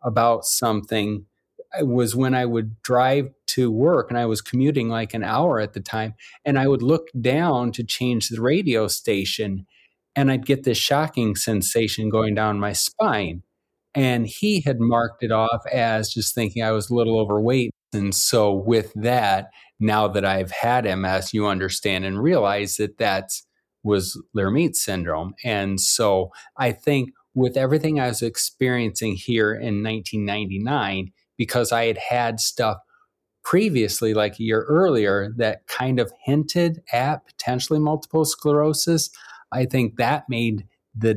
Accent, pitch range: American, 105-125 Hz